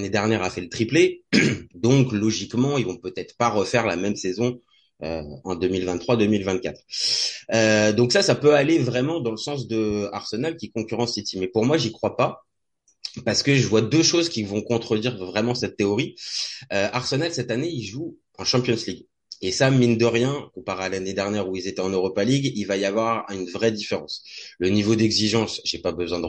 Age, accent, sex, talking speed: 20-39, French, male, 205 wpm